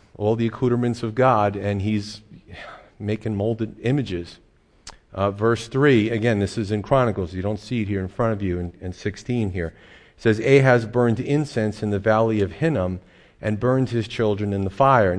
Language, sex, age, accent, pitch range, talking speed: English, male, 40-59, American, 95-110 Hz, 190 wpm